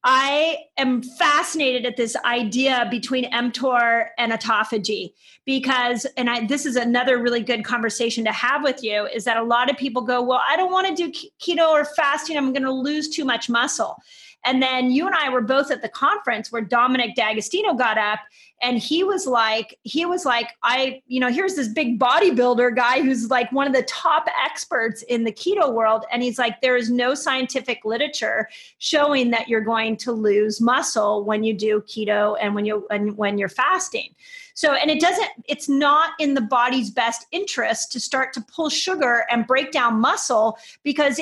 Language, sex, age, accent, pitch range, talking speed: English, female, 30-49, American, 235-300 Hz, 195 wpm